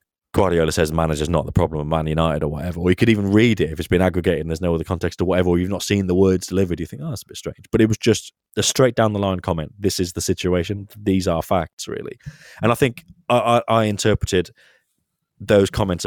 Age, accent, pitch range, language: 20-39, British, 85-110 Hz, English